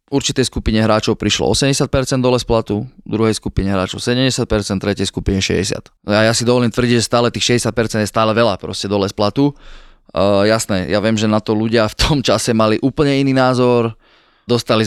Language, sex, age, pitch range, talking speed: Slovak, male, 20-39, 105-115 Hz, 180 wpm